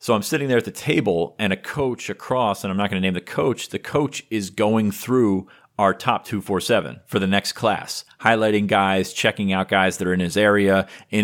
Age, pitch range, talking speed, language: 30-49, 95-105 Hz, 235 wpm, English